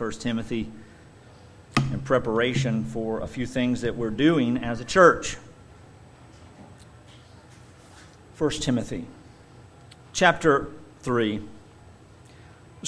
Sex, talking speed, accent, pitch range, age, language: male, 85 wpm, American, 120-160 Hz, 50-69, English